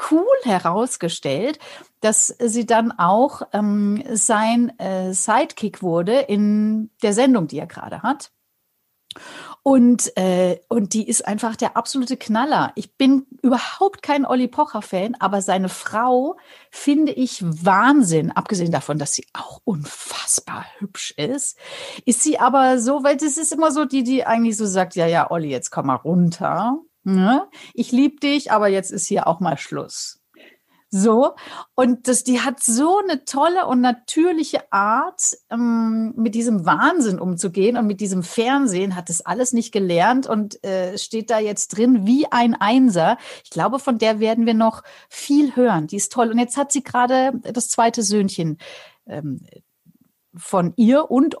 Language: German